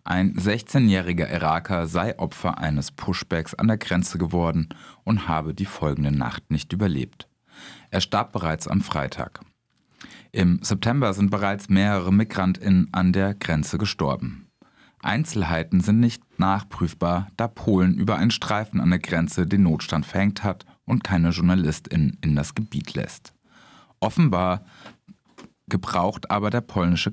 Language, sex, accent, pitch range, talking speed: German, male, German, 85-105 Hz, 135 wpm